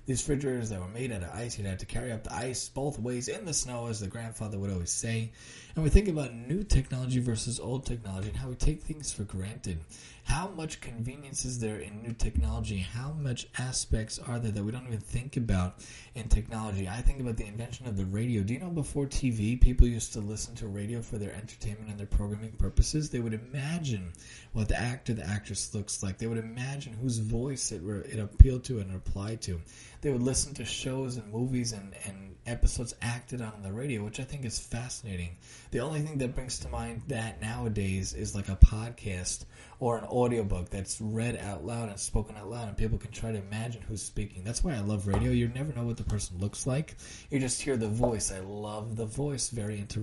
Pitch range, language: 100-125 Hz, English